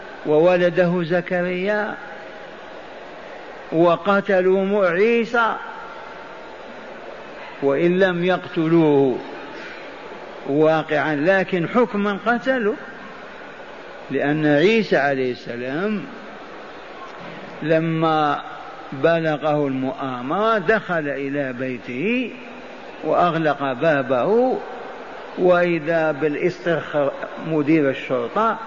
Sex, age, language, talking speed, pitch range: male, 50-69, Arabic, 55 wpm, 155-205 Hz